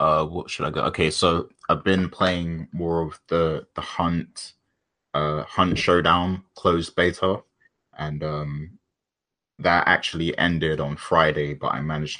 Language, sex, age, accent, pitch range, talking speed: English, male, 20-39, British, 75-85 Hz, 150 wpm